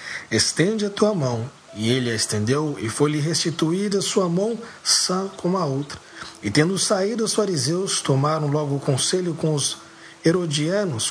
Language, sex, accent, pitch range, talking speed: English, male, Brazilian, 125-185 Hz, 155 wpm